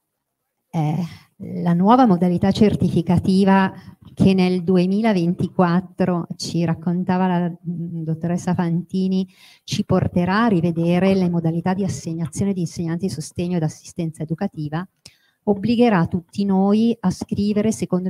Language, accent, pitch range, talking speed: Italian, native, 160-185 Hz, 110 wpm